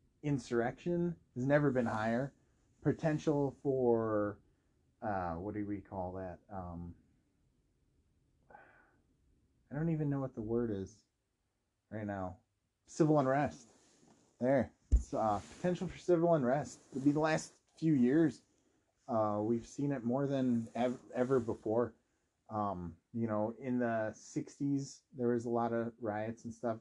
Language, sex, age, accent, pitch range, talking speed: English, male, 30-49, American, 110-135 Hz, 140 wpm